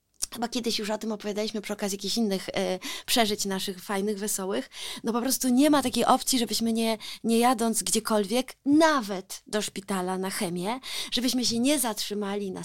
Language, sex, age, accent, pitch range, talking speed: Polish, female, 20-39, native, 205-265 Hz, 170 wpm